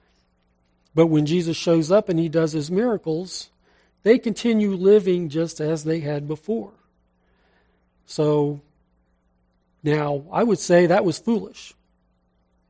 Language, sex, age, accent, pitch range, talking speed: English, male, 40-59, American, 145-185 Hz, 125 wpm